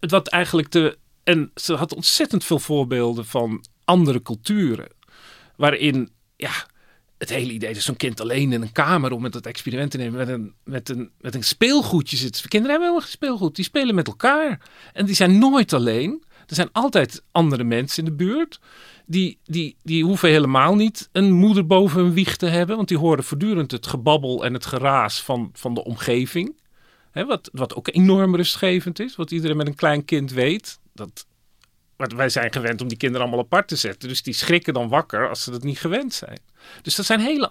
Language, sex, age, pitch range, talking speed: Dutch, male, 40-59, 125-190 Hz, 205 wpm